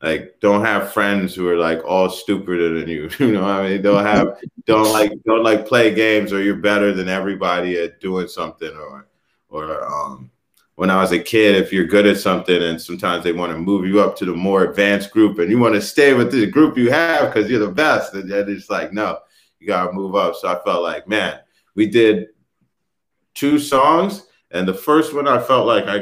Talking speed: 225 wpm